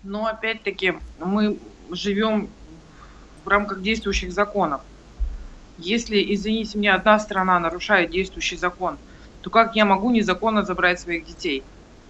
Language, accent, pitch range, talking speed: Russian, native, 200-230 Hz, 120 wpm